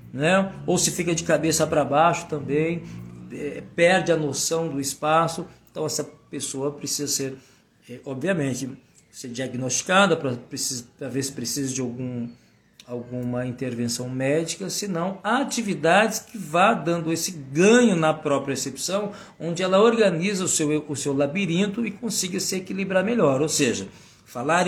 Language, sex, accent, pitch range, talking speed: Portuguese, male, Brazilian, 135-190 Hz, 140 wpm